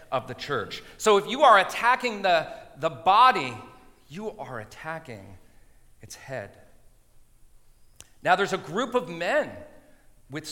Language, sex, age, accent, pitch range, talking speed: English, male, 40-59, American, 135-220 Hz, 130 wpm